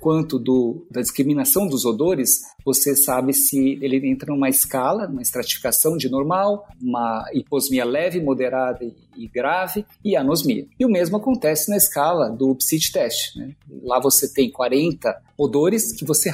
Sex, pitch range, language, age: male, 135-175 Hz, Portuguese, 50-69